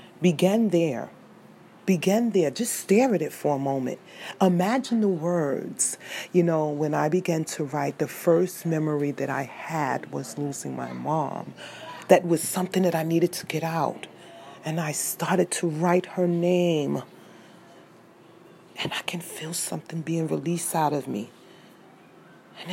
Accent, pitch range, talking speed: American, 145-180 Hz, 155 wpm